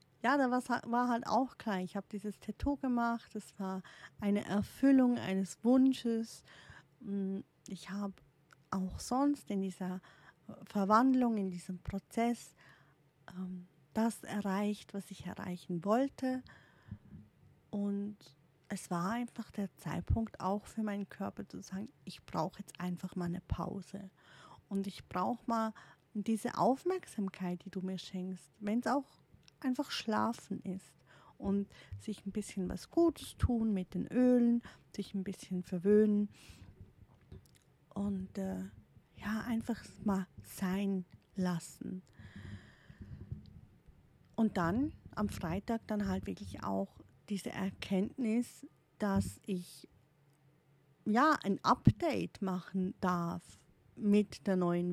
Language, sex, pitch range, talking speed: German, female, 180-225 Hz, 120 wpm